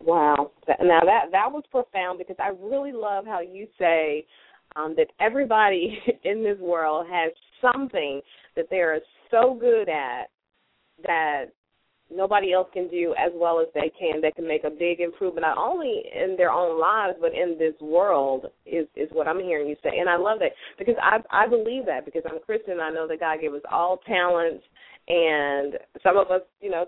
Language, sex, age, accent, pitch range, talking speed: English, female, 30-49, American, 165-230 Hz, 195 wpm